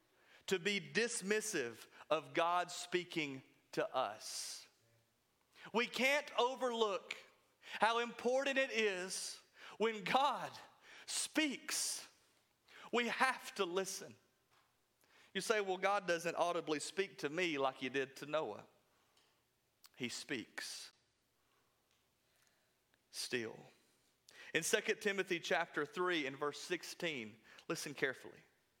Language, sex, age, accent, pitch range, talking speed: English, male, 40-59, American, 165-225 Hz, 100 wpm